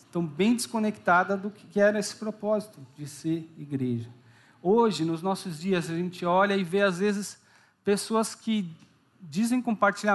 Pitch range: 150-210 Hz